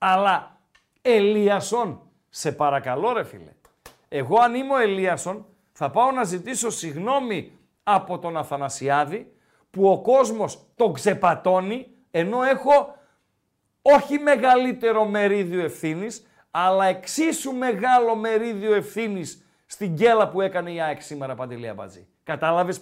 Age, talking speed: 50-69, 120 wpm